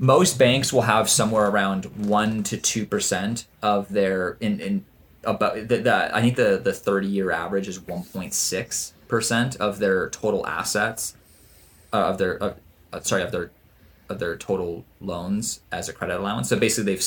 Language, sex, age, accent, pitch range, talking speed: English, male, 20-39, American, 95-115 Hz, 180 wpm